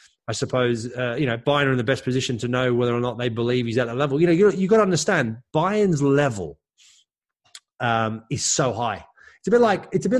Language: English